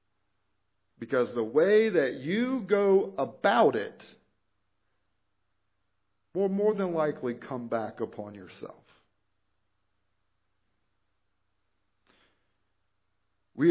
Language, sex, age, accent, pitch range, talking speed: English, male, 50-69, American, 100-155 Hz, 75 wpm